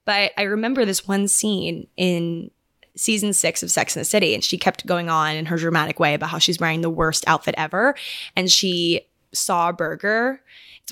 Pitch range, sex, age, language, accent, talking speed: 175-210 Hz, female, 20-39, English, American, 200 wpm